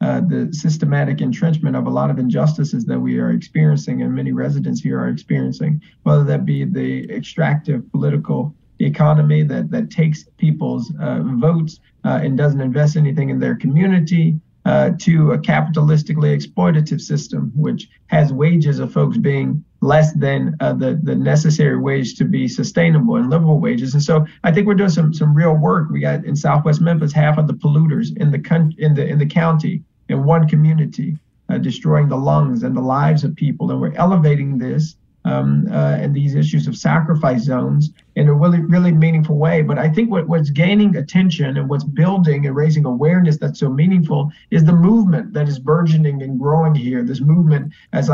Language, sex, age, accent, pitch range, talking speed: English, male, 30-49, American, 140-160 Hz, 185 wpm